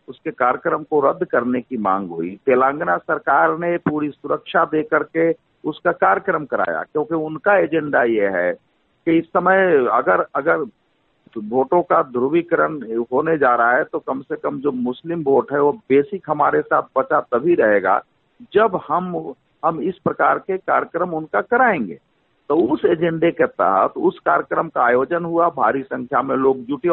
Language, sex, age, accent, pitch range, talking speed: Hindi, male, 50-69, native, 145-200 Hz, 165 wpm